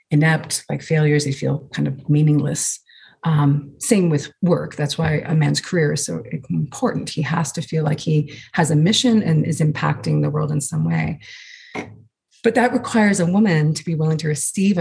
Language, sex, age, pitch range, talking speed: English, female, 30-49, 150-175 Hz, 190 wpm